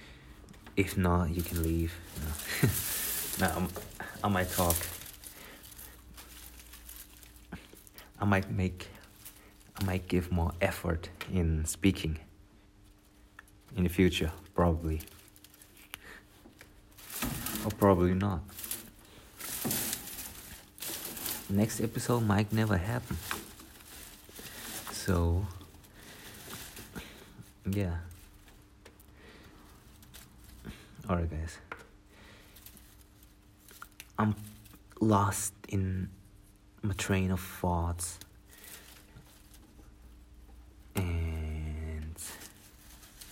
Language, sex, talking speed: English, male, 65 wpm